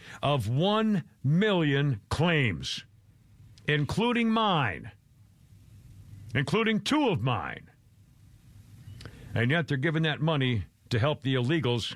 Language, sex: English, male